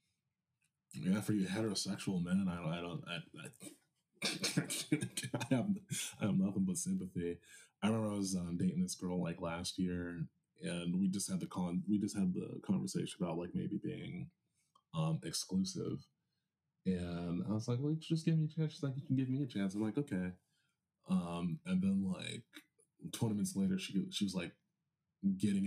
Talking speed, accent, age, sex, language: 185 wpm, American, 20-39, male, English